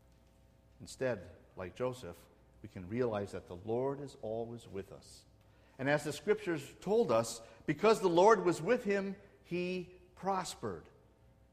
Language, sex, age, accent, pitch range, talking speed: English, male, 50-69, American, 100-160 Hz, 140 wpm